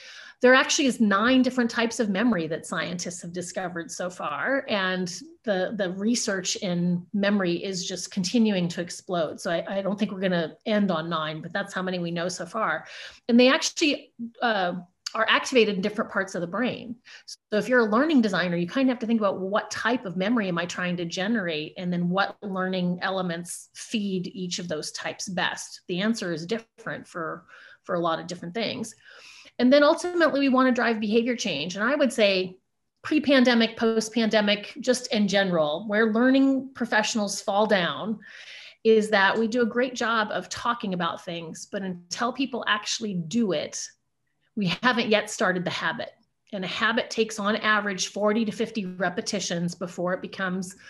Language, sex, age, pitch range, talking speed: English, female, 30-49, 185-235 Hz, 185 wpm